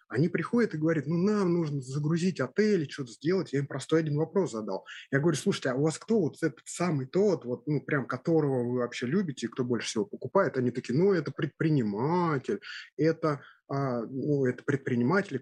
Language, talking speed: Russian, 195 wpm